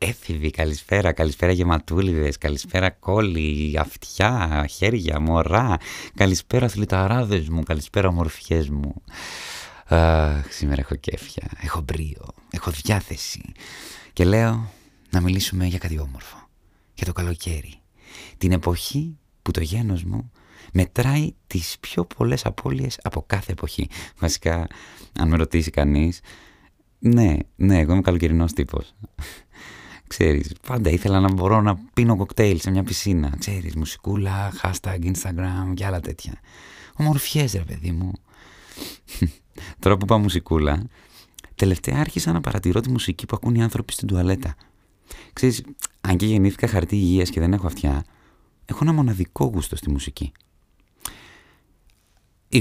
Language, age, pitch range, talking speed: Greek, 30-49, 80-100 Hz, 130 wpm